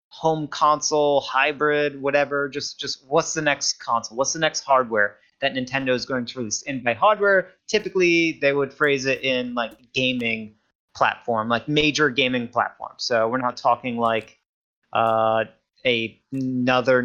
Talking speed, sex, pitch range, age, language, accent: 155 wpm, male, 120-155 Hz, 30-49, English, American